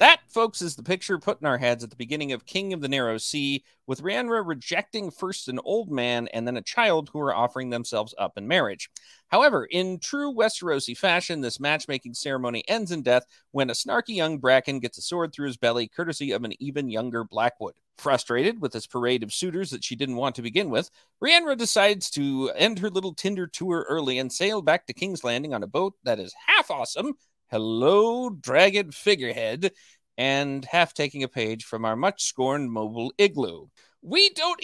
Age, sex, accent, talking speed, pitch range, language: 40-59, male, American, 195 wpm, 125-195 Hz, English